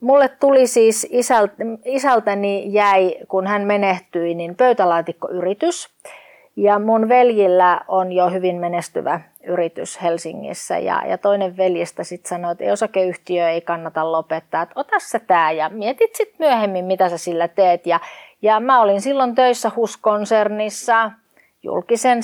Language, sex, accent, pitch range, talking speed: Finnish, female, native, 180-240 Hz, 135 wpm